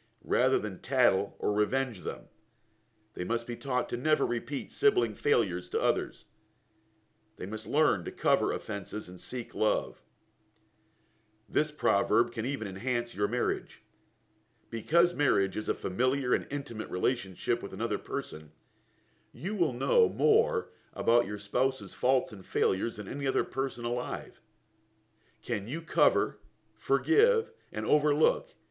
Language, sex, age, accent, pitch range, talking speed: English, male, 50-69, American, 110-135 Hz, 135 wpm